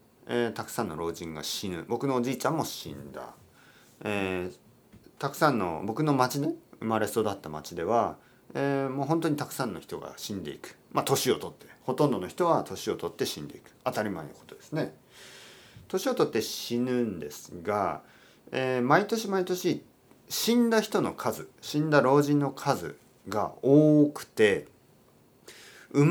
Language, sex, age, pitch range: Japanese, male, 40-59, 95-150 Hz